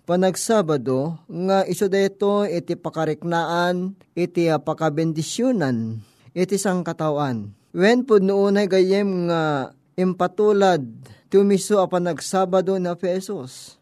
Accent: native